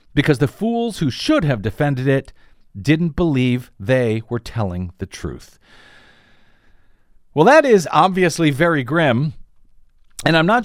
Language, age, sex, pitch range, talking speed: English, 50-69, male, 115-155 Hz, 135 wpm